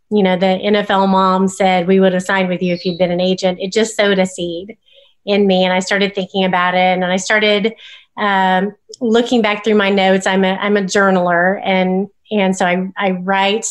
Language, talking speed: English, 220 wpm